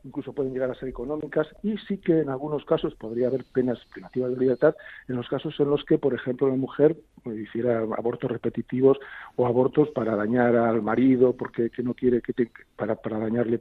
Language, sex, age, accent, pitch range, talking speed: Spanish, male, 50-69, Spanish, 120-150 Hz, 205 wpm